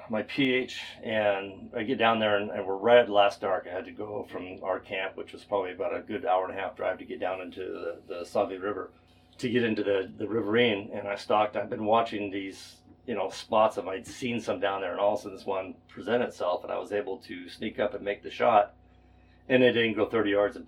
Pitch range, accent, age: 95-115 Hz, American, 40-59